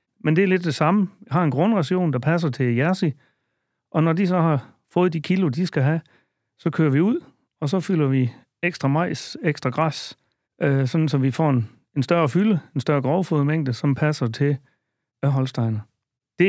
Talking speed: 195 wpm